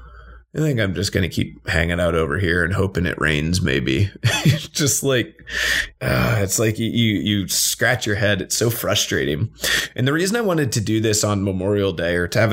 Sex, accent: male, American